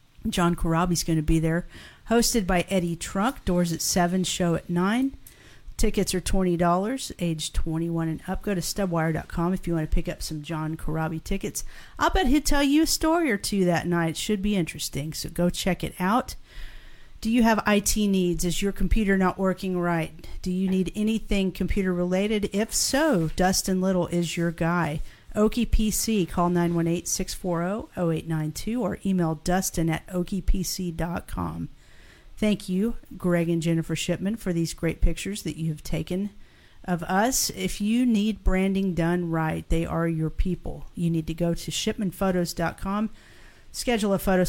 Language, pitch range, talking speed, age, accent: English, 165-195 Hz, 165 wpm, 50-69, American